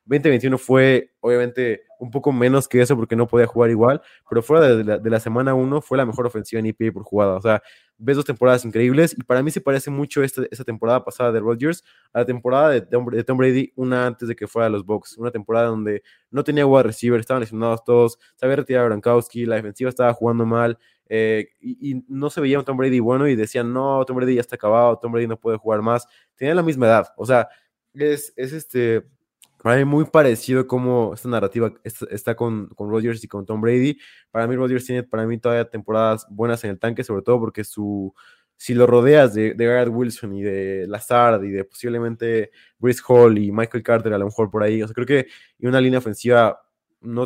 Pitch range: 110-130 Hz